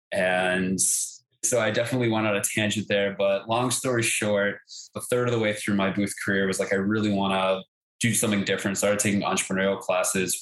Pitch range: 95-105 Hz